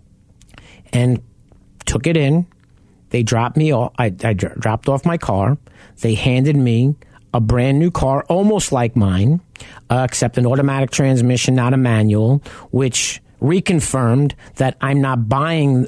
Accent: American